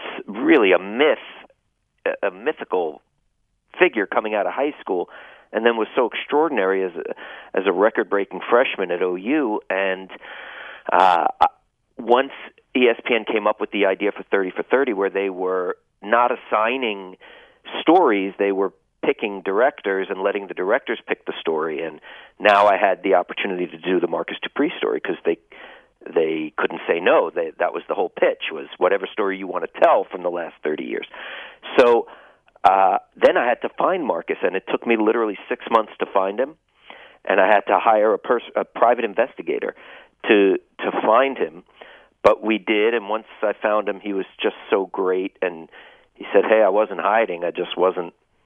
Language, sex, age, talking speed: English, male, 40-59, 180 wpm